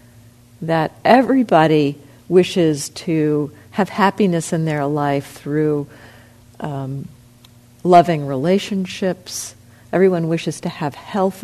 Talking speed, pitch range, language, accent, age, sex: 95 wpm, 120-175 Hz, English, American, 50-69, female